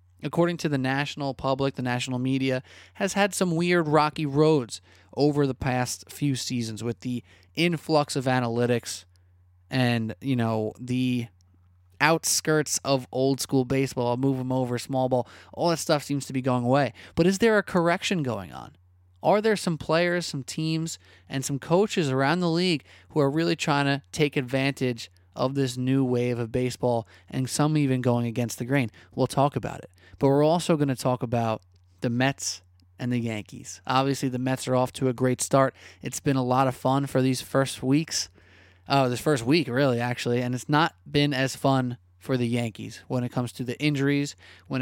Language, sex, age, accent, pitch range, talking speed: English, male, 20-39, American, 115-140 Hz, 190 wpm